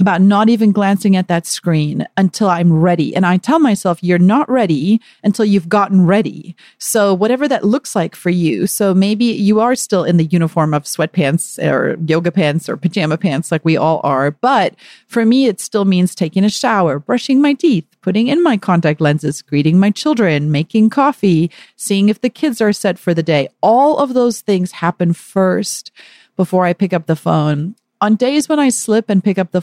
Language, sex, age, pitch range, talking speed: English, female, 40-59, 175-225 Hz, 205 wpm